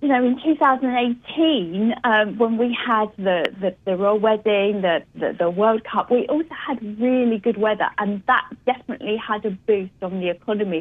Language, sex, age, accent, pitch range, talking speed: English, female, 40-59, British, 215-265 Hz, 185 wpm